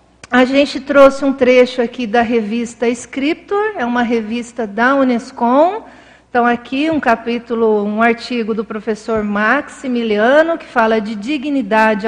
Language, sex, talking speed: Portuguese, female, 135 wpm